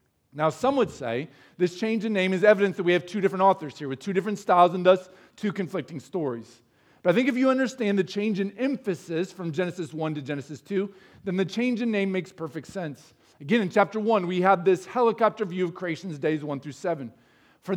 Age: 40-59